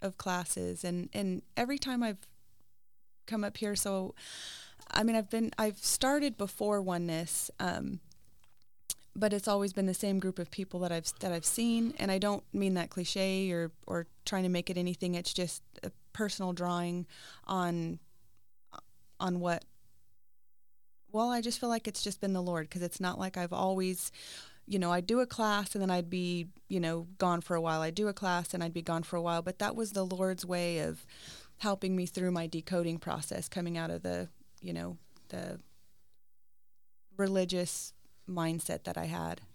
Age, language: 30-49, English